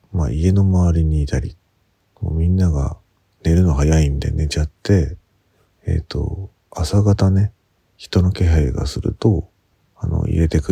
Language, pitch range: Japanese, 80-100 Hz